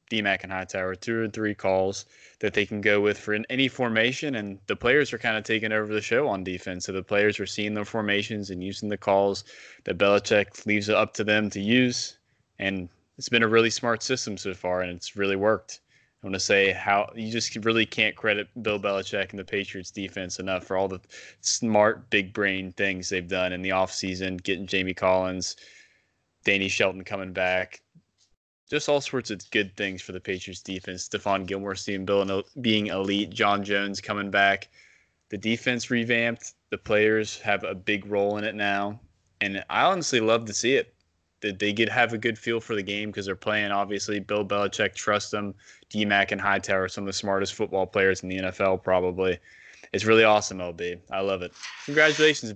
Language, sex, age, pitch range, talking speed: English, male, 20-39, 95-110 Hz, 200 wpm